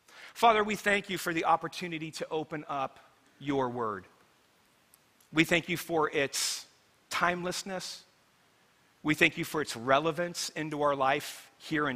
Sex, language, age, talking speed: male, English, 40-59, 145 wpm